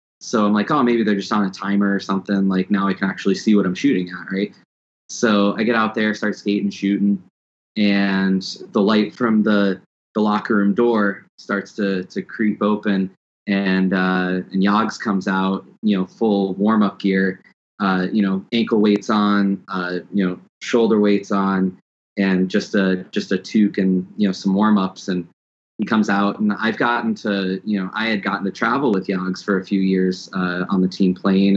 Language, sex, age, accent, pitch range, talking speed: English, male, 20-39, American, 95-105 Hz, 205 wpm